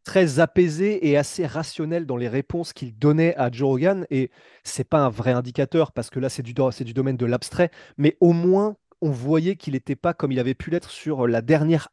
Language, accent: French, French